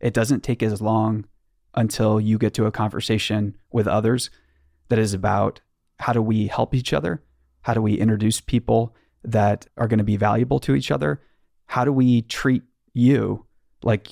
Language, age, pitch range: English, 30-49, 105-120 Hz